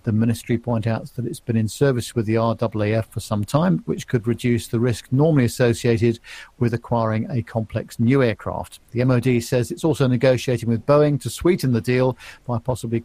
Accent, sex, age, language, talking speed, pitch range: British, male, 50-69, English, 195 wpm, 115-135 Hz